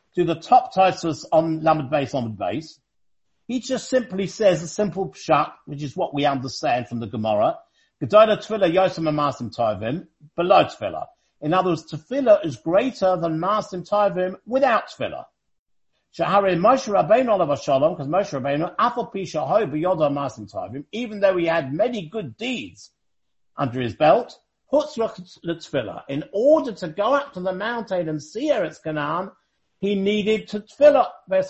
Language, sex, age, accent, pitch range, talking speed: English, male, 50-69, British, 155-225 Hz, 155 wpm